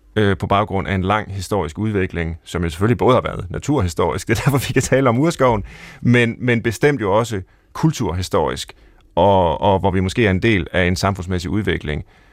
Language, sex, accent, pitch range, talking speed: Danish, male, native, 100-135 Hz, 190 wpm